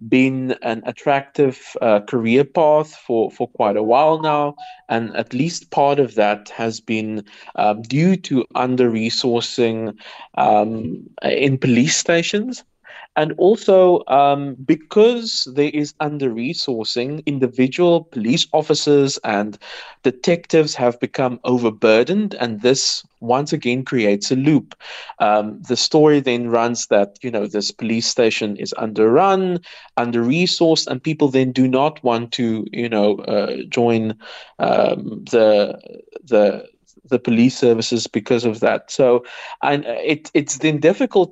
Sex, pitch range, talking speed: male, 115-150 Hz, 130 wpm